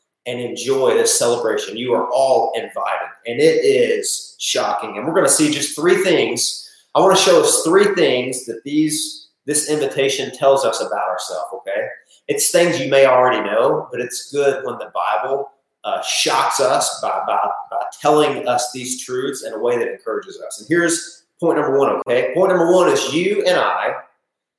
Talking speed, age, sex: 185 wpm, 30-49, male